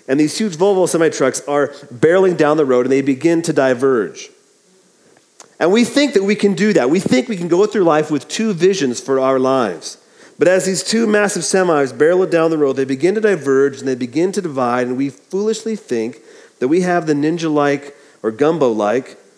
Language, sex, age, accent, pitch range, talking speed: English, male, 40-59, American, 115-170 Hz, 205 wpm